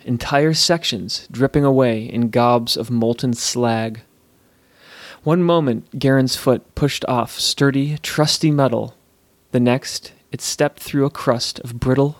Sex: male